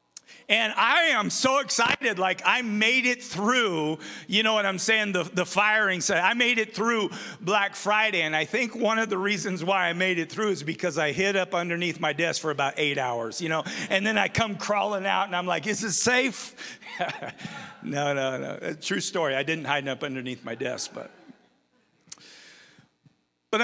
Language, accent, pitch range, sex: English, American, 170-215 Hz, male